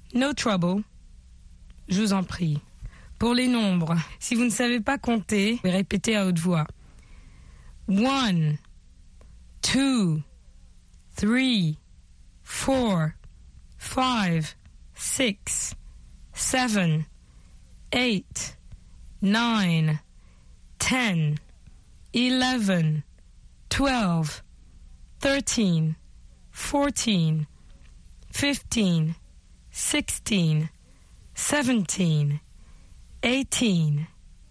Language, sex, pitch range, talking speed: French, female, 140-235 Hz, 65 wpm